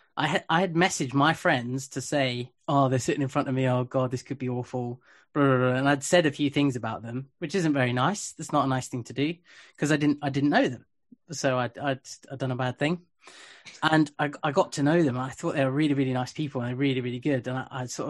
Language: English